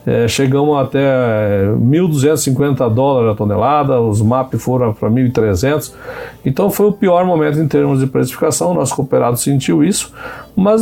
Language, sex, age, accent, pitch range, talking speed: Portuguese, male, 60-79, Brazilian, 120-165 Hz, 150 wpm